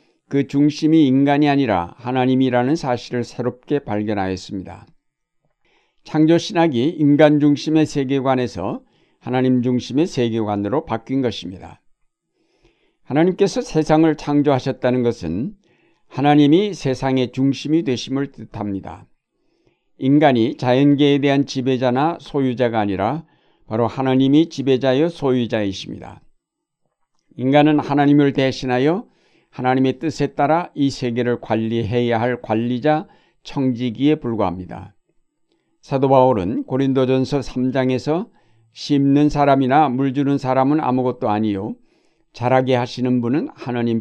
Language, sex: Korean, male